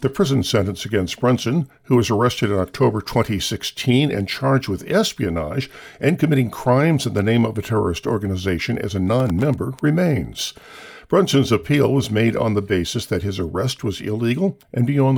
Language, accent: English, American